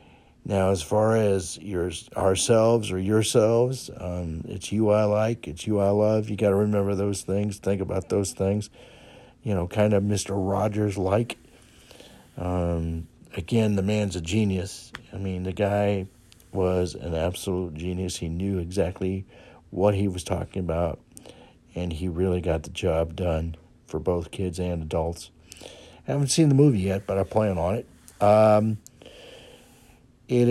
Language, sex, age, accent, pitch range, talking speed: English, male, 60-79, American, 90-110 Hz, 155 wpm